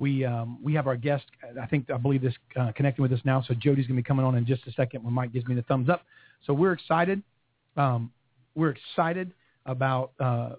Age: 40-59